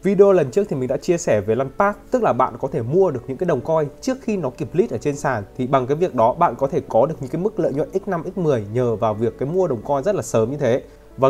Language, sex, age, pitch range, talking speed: Vietnamese, male, 20-39, 125-180 Hz, 315 wpm